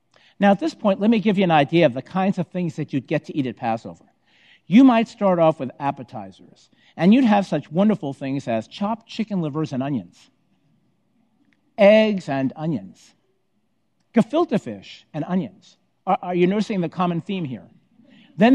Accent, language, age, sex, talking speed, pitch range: American, English, 50-69, male, 180 wpm, 145-205 Hz